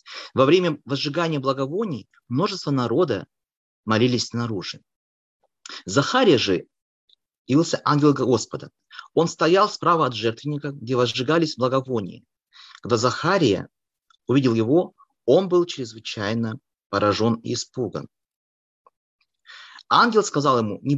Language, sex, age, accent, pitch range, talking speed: Russian, male, 30-49, native, 120-155 Hz, 100 wpm